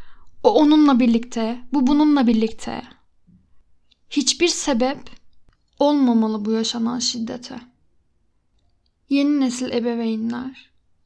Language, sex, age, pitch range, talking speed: Turkish, female, 10-29, 235-275 Hz, 80 wpm